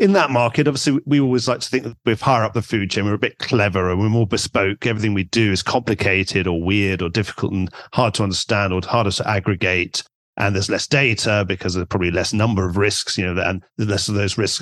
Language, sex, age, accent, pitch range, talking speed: English, male, 40-59, British, 105-140 Hz, 240 wpm